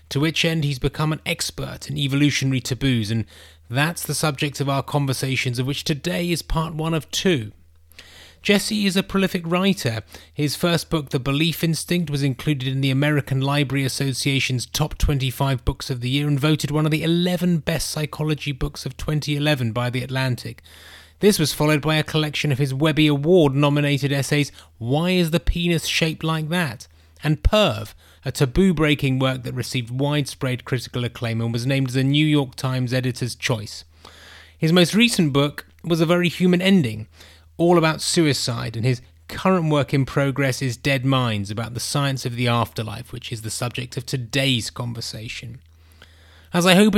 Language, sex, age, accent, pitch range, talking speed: English, male, 30-49, British, 120-155 Hz, 175 wpm